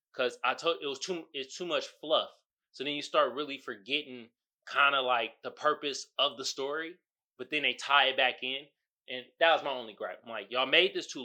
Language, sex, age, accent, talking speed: English, male, 20-39, American, 230 wpm